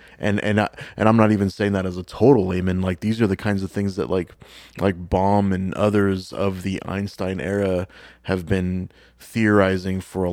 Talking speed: 205 wpm